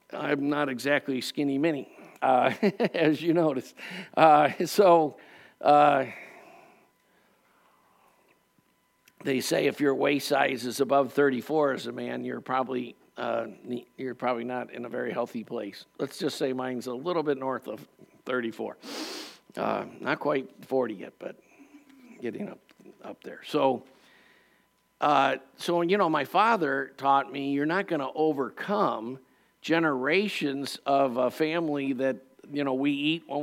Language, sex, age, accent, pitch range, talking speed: English, male, 60-79, American, 135-185 Hz, 140 wpm